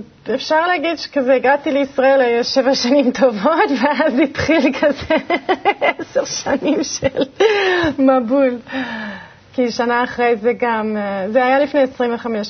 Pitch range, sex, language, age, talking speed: 215-260 Hz, female, Hebrew, 30-49, 125 wpm